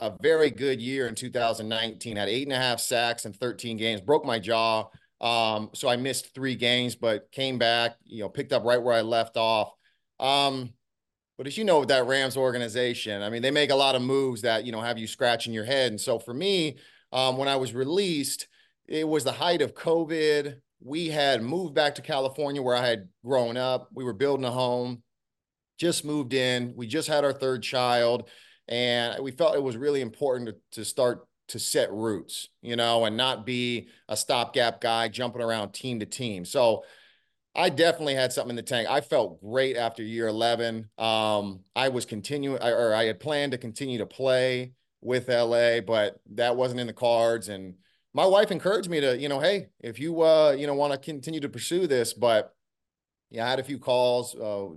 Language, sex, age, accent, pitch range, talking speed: English, male, 30-49, American, 115-135 Hz, 205 wpm